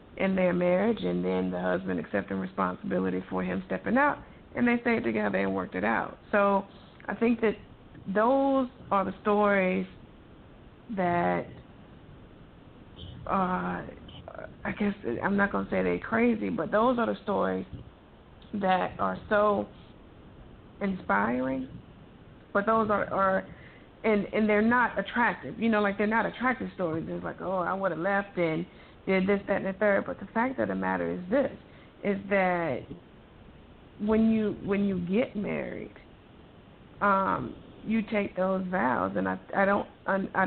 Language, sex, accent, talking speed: English, female, American, 155 wpm